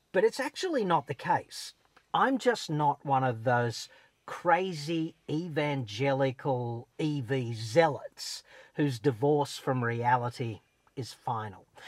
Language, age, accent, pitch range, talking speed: English, 50-69, Australian, 130-180 Hz, 110 wpm